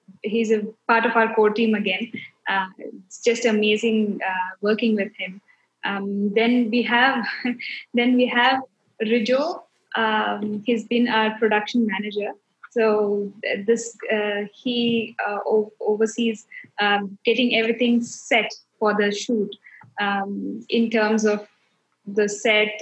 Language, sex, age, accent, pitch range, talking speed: English, female, 20-39, Indian, 210-235 Hz, 130 wpm